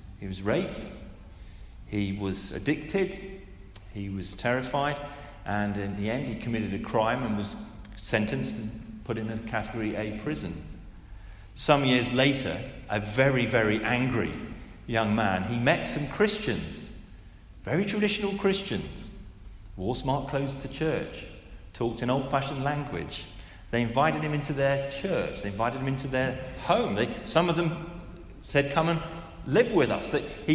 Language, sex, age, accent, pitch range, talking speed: English, male, 40-59, British, 110-180 Hz, 145 wpm